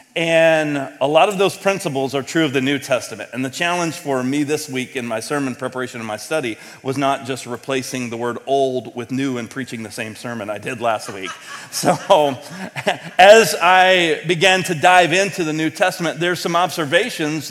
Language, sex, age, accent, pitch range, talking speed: English, male, 40-59, American, 140-185 Hz, 195 wpm